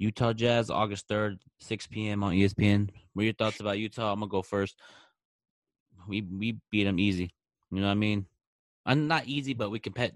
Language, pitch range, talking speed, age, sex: English, 100-115 Hz, 205 wpm, 20-39, male